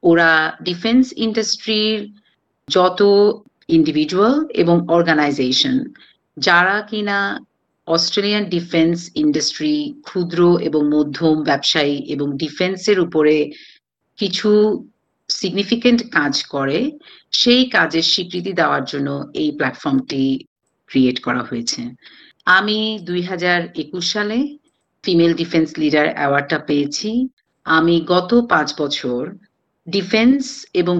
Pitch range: 155-215 Hz